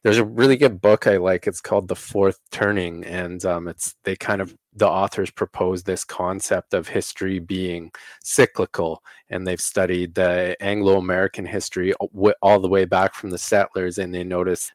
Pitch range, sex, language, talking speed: 90-100 Hz, male, English, 175 wpm